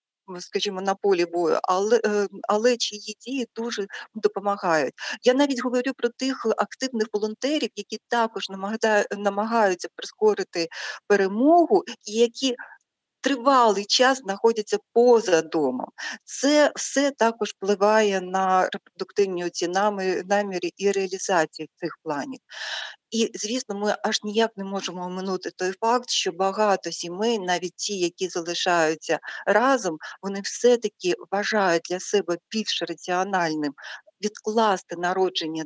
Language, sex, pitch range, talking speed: Ukrainian, female, 190-245 Hz, 115 wpm